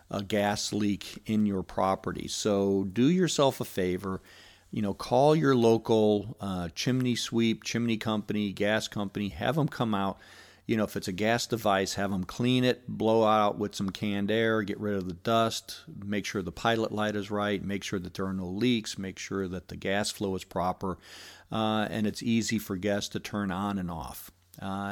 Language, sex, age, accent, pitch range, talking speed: English, male, 50-69, American, 100-115 Hz, 200 wpm